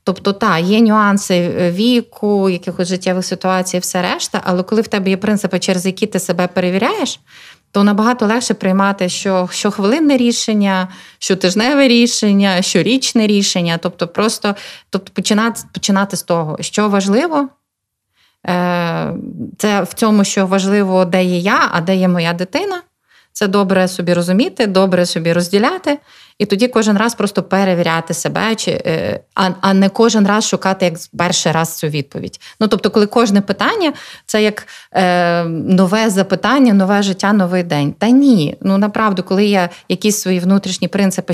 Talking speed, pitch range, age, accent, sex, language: 150 wpm, 180-215 Hz, 20-39, native, female, Ukrainian